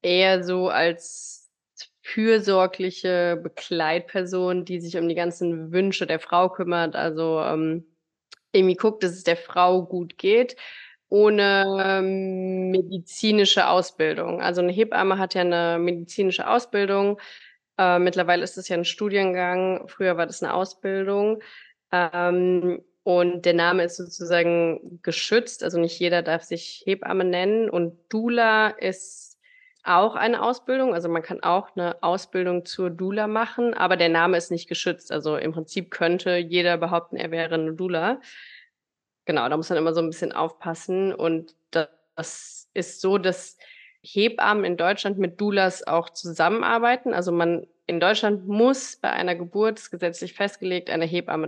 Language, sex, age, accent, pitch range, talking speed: English, female, 20-39, German, 170-195 Hz, 145 wpm